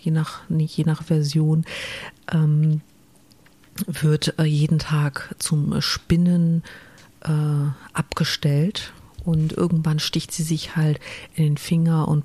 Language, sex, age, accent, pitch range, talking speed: German, female, 40-59, German, 145-170 Hz, 110 wpm